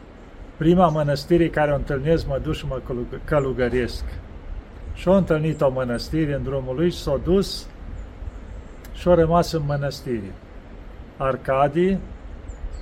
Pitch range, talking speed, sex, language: 120-160 Hz, 110 wpm, male, Romanian